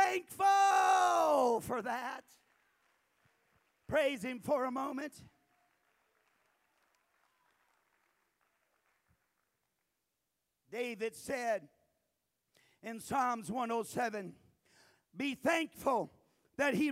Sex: male